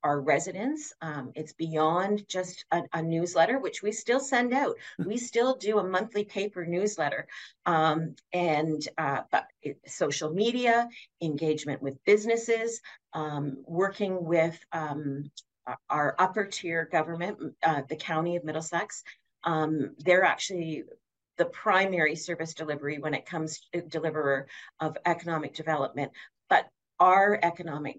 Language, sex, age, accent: English, female, 40-59, American